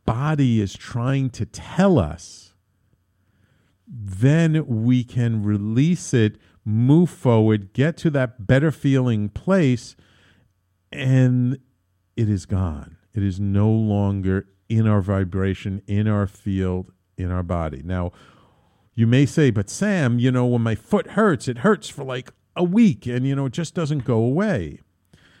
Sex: male